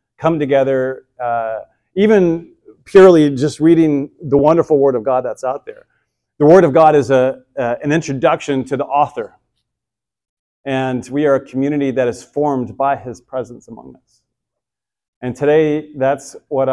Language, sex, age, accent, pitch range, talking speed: English, male, 40-59, American, 130-155 Hz, 155 wpm